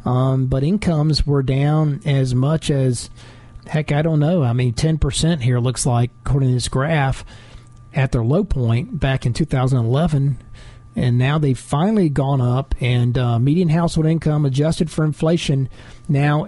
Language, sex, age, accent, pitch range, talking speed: English, male, 40-59, American, 120-150 Hz, 160 wpm